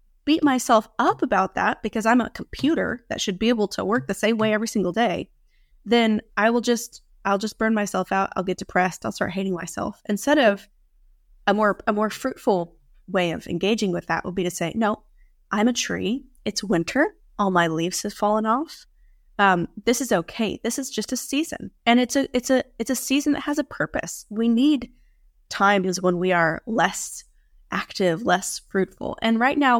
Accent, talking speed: American, 200 wpm